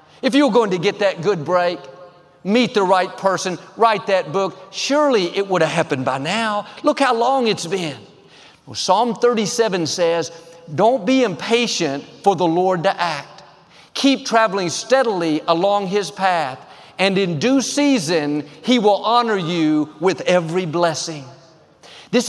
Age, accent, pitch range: 50-69, American, 170-240 Hz